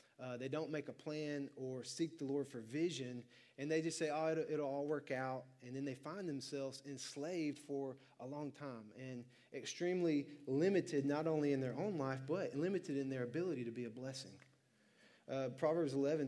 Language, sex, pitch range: English, male, 130-155 Hz